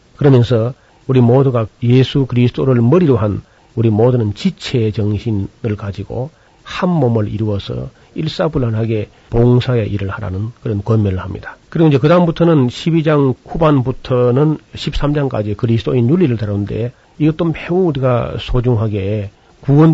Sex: male